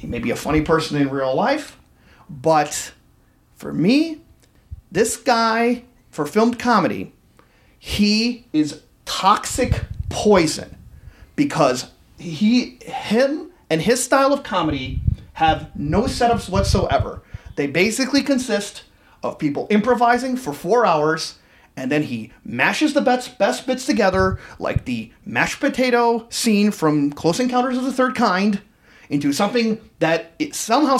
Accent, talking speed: American, 130 wpm